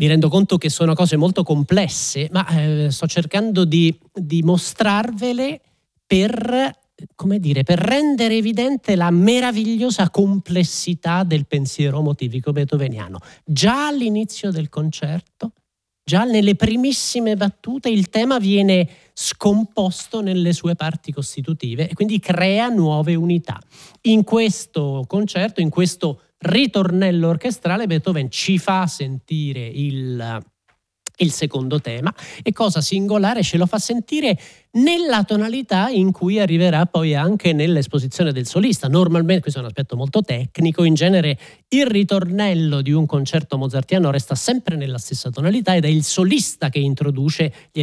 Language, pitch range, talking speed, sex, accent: Italian, 150-205 Hz, 135 wpm, male, native